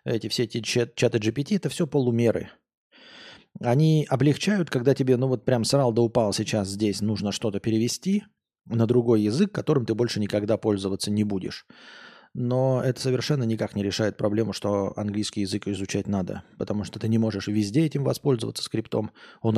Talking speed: 175 wpm